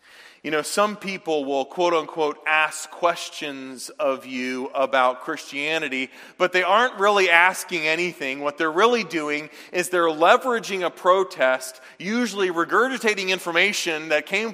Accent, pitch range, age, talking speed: American, 135-185 Hz, 30-49, 130 wpm